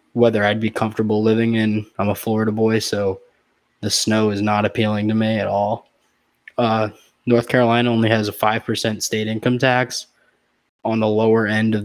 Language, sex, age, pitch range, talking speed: English, male, 20-39, 105-120 Hz, 175 wpm